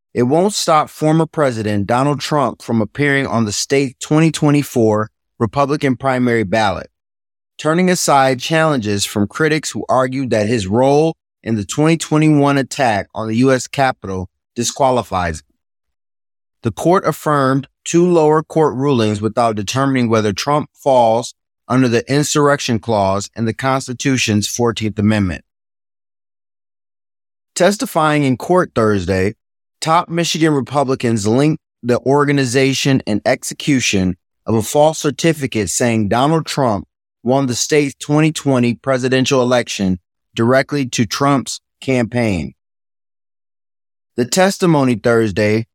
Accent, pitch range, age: American, 105-145 Hz, 30-49